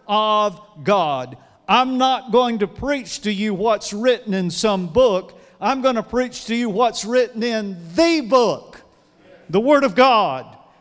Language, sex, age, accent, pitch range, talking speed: English, male, 50-69, American, 170-220 Hz, 160 wpm